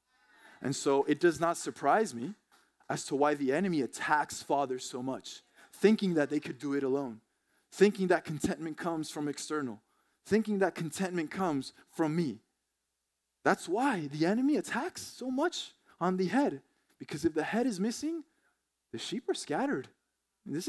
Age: 20-39